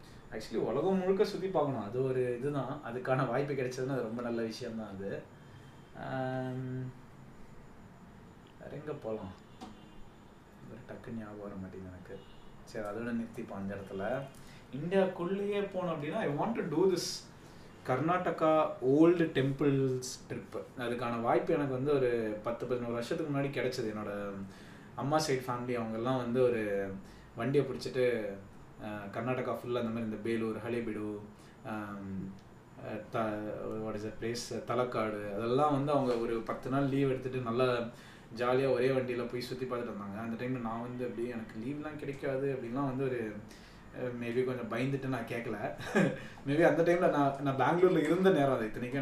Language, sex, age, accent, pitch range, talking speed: Tamil, male, 20-39, native, 110-140 Hz, 140 wpm